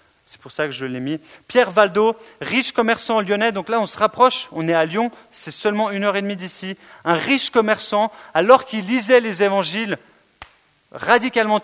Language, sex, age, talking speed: French, male, 30-49, 190 wpm